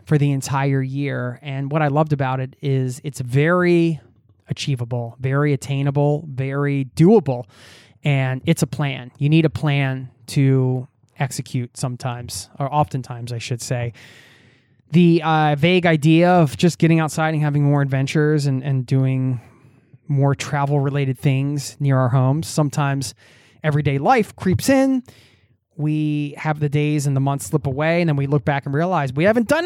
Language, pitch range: English, 125-155 Hz